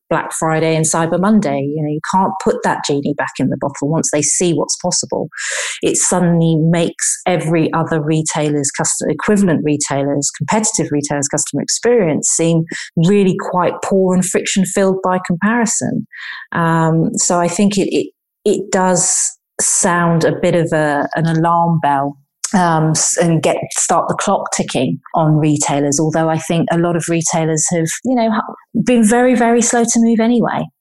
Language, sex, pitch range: English, female, 155-190 Hz